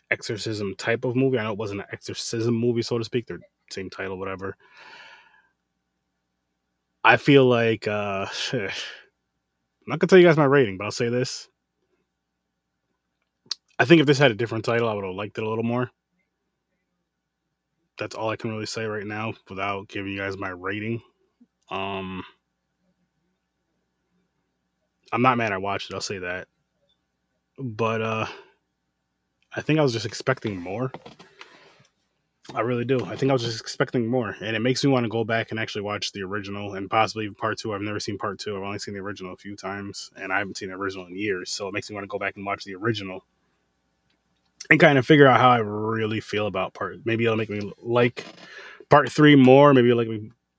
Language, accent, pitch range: English, American, 90-120 Hz